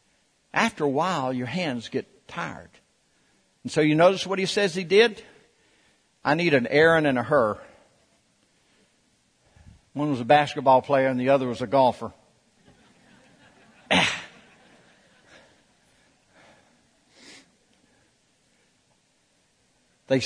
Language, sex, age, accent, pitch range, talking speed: English, male, 60-79, American, 120-150 Hz, 105 wpm